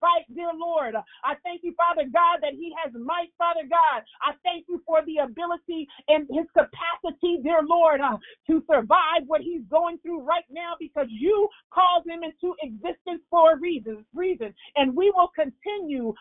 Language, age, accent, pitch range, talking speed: English, 40-59, American, 280-340 Hz, 175 wpm